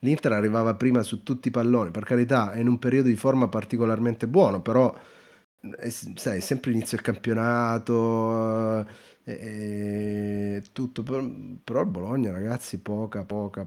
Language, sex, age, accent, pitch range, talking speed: Italian, male, 30-49, native, 100-125 Hz, 140 wpm